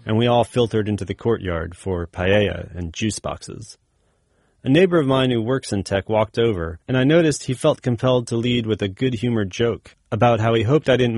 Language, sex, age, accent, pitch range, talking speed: English, male, 30-49, American, 95-125 Hz, 215 wpm